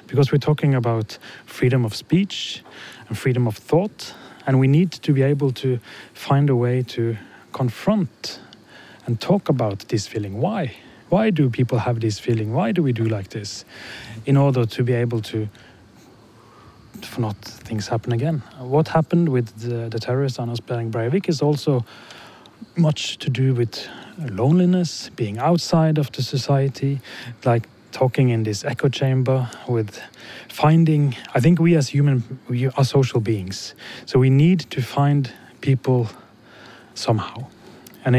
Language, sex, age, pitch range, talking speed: Czech, male, 30-49, 115-145 Hz, 150 wpm